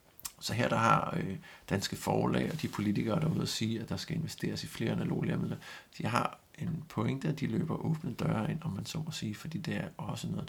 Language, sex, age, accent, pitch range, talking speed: Danish, male, 60-79, native, 155-175 Hz, 235 wpm